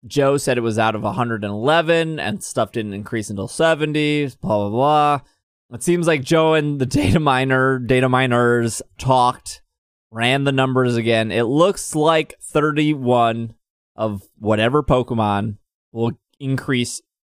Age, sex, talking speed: 20-39, male, 140 wpm